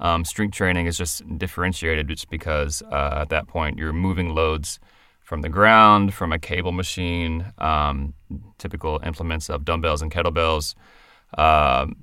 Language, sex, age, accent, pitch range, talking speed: English, male, 30-49, American, 75-95 Hz, 150 wpm